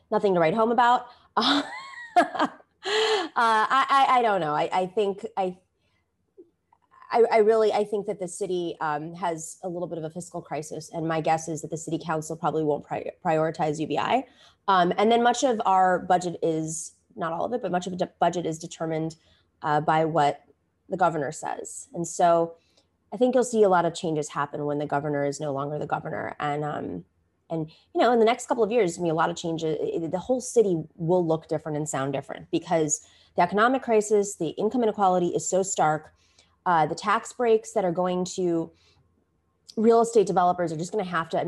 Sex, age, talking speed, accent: female, 20-39, 210 wpm, American